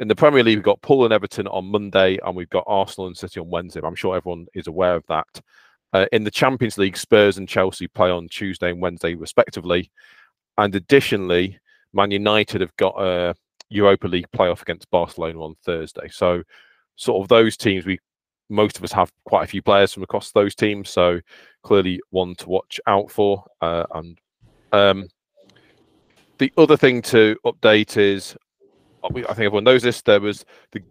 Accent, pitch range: British, 90-105 Hz